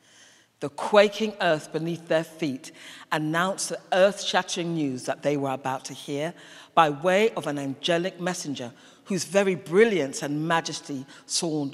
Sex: female